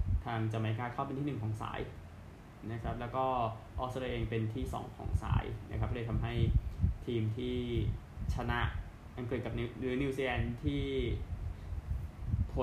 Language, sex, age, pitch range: Thai, male, 20-39, 105-120 Hz